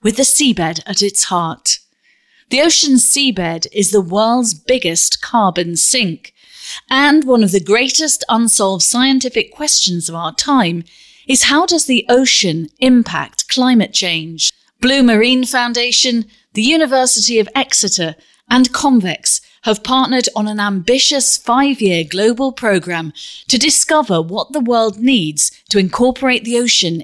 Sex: female